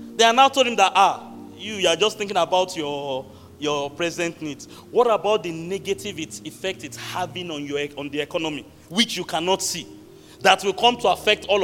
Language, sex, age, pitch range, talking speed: English, male, 40-59, 150-205 Hz, 200 wpm